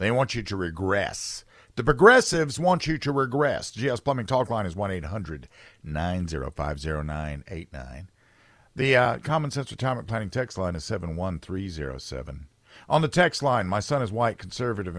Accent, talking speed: American, 150 wpm